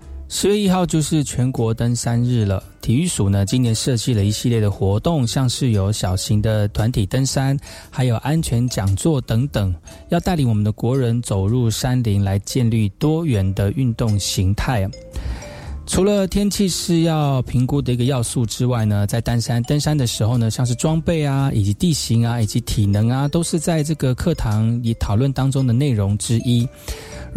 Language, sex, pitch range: Chinese, male, 105-140 Hz